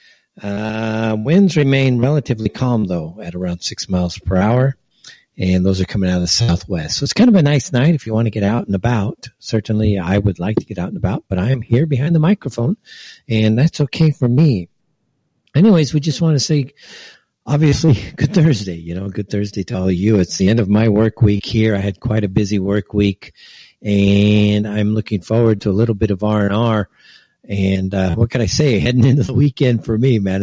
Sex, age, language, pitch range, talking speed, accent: male, 50-69, English, 100-120 Hz, 225 wpm, American